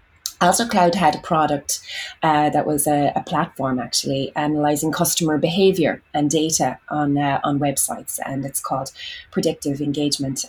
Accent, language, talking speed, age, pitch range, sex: Irish, English, 150 wpm, 20-39, 145-180 Hz, female